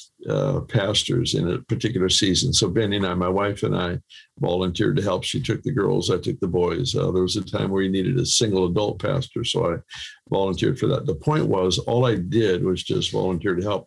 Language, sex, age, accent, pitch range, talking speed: English, male, 60-79, American, 95-130 Hz, 230 wpm